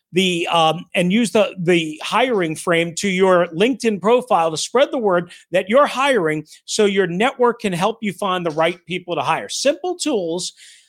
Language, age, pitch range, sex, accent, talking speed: English, 40-59, 175-255 Hz, male, American, 180 wpm